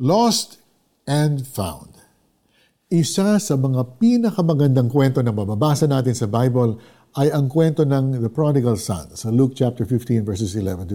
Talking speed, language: 135 wpm, Filipino